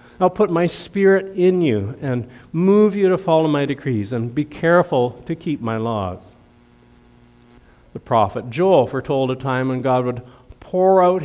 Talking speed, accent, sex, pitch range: 165 wpm, American, male, 115-155 Hz